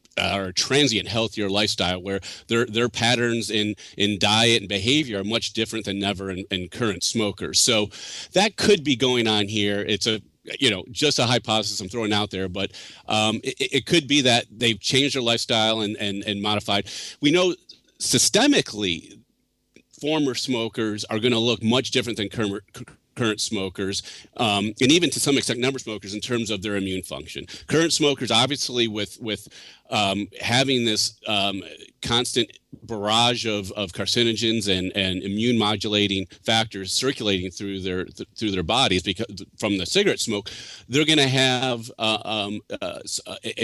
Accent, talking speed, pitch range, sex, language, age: American, 170 wpm, 100-120 Hz, male, English, 40-59